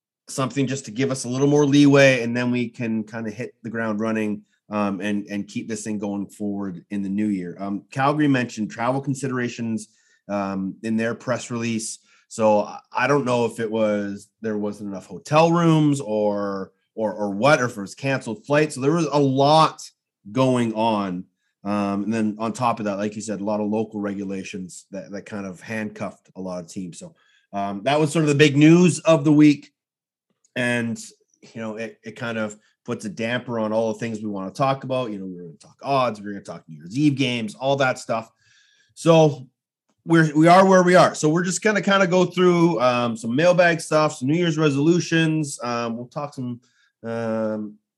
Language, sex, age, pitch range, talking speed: English, male, 30-49, 105-145 Hz, 215 wpm